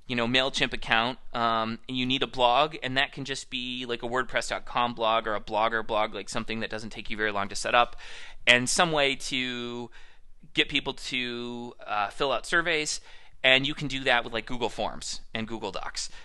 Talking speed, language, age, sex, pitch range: 210 wpm, English, 30-49, male, 120-155 Hz